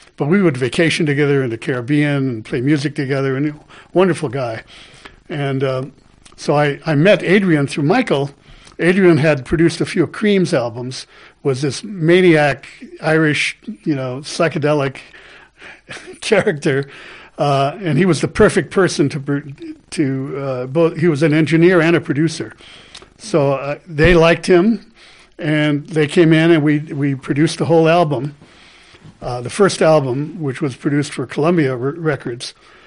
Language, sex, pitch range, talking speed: English, male, 140-170 Hz, 155 wpm